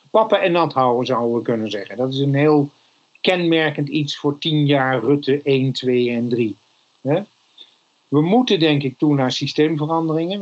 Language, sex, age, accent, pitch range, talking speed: Dutch, male, 50-69, Dutch, 130-155 Hz, 165 wpm